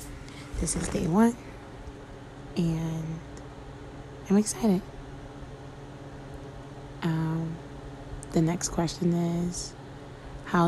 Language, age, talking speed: English, 20-39, 75 wpm